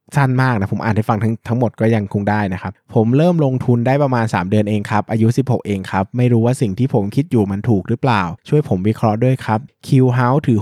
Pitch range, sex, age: 105-125 Hz, male, 20-39